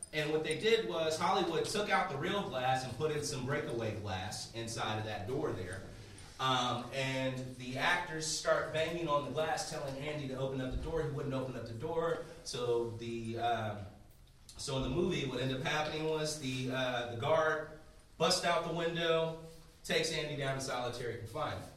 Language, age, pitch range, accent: English, 30-49, 120-165 Hz, American